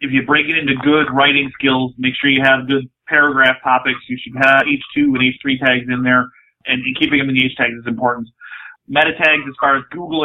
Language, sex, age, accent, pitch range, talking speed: English, male, 30-49, American, 125-140 Hz, 235 wpm